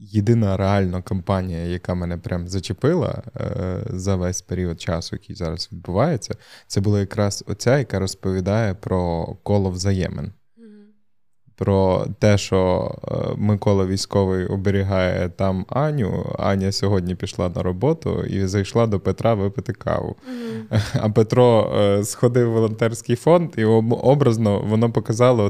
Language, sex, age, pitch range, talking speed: Ukrainian, male, 20-39, 95-115 Hz, 120 wpm